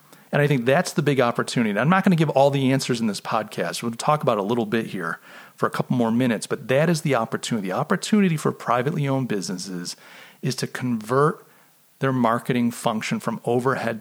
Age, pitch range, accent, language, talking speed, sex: 40-59, 115-150 Hz, American, English, 210 wpm, male